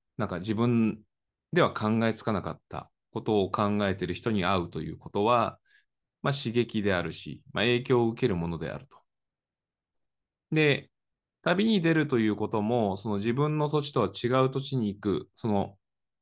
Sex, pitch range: male, 95-135 Hz